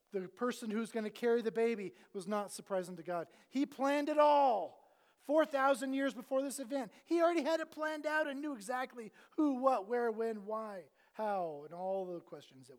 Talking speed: 195 wpm